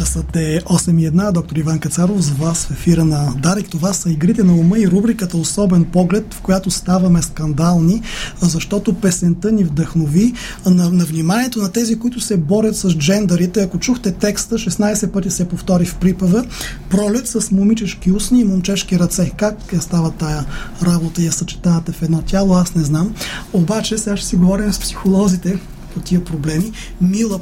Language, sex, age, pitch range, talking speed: Bulgarian, male, 20-39, 170-200 Hz, 175 wpm